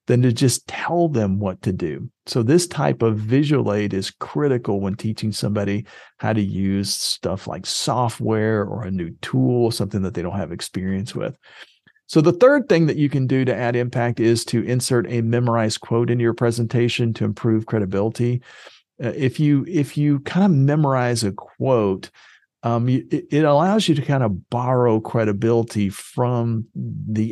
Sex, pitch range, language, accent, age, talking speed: male, 105-130 Hz, English, American, 50-69, 170 wpm